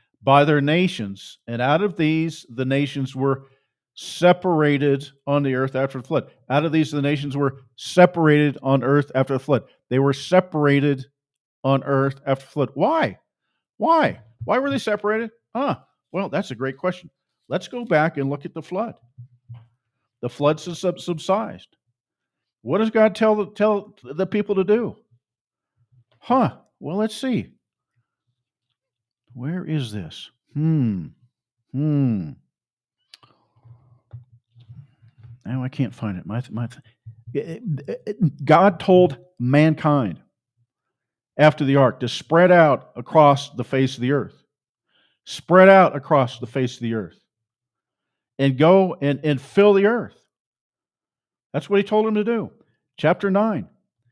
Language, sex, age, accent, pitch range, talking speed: English, male, 50-69, American, 125-175 Hz, 135 wpm